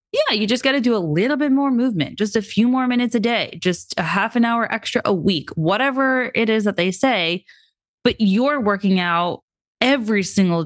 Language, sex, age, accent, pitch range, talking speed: English, female, 20-39, American, 165-235 Hz, 215 wpm